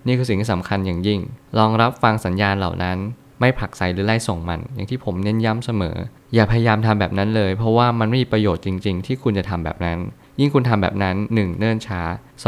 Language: Thai